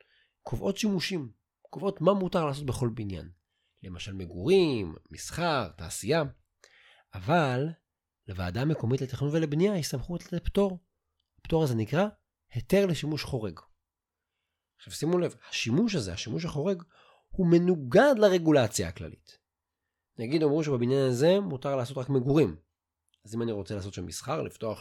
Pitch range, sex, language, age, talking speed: 90-150 Hz, male, Hebrew, 30-49, 130 wpm